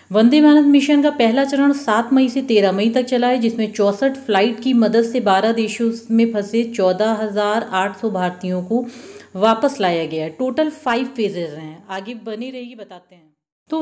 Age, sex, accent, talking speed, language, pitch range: 40-59, female, native, 180 wpm, Hindi, 210-260 Hz